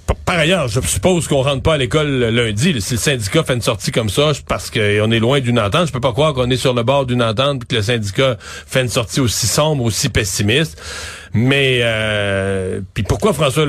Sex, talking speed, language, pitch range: male, 230 wpm, French, 115-150 Hz